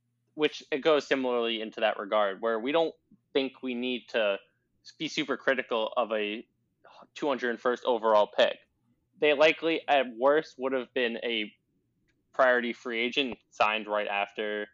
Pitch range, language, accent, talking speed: 115-145 Hz, English, American, 145 wpm